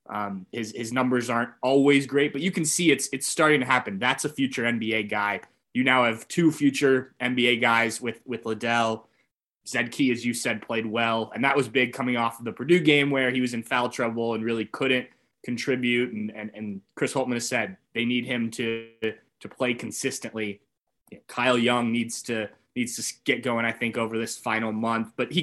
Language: English